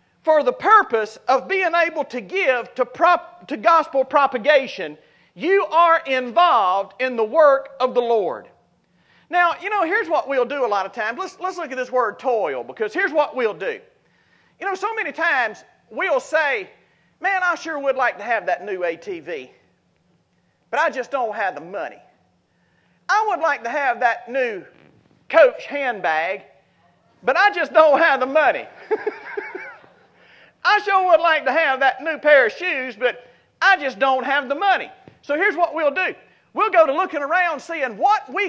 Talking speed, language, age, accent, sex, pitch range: 180 wpm, English, 40-59, American, male, 255-370 Hz